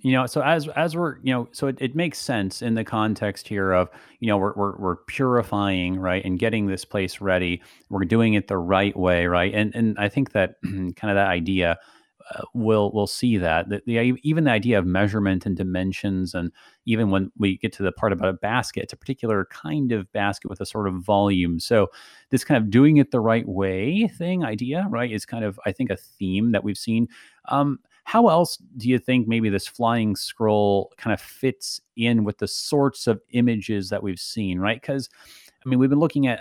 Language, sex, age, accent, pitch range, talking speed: English, male, 30-49, American, 95-120 Hz, 220 wpm